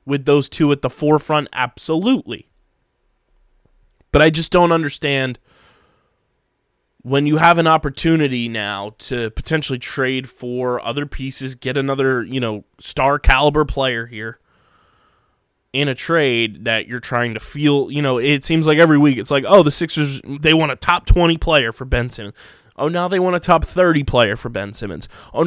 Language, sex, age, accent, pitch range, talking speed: English, male, 20-39, American, 125-155 Hz, 170 wpm